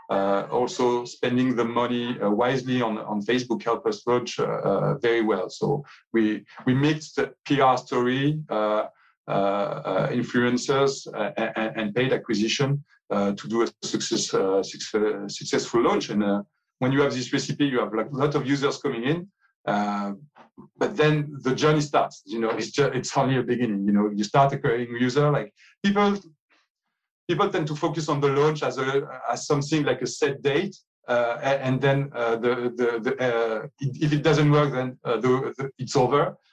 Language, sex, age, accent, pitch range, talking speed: English, male, 40-59, French, 120-145 Hz, 185 wpm